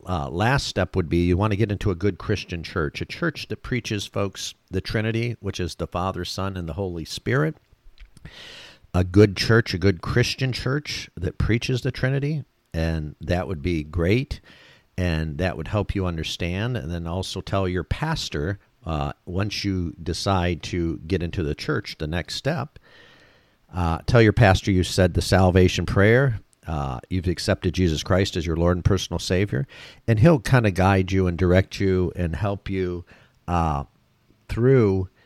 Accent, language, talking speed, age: American, English, 175 wpm, 50-69